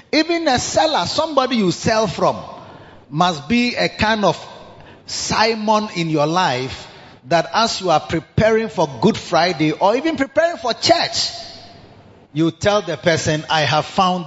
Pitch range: 140-205 Hz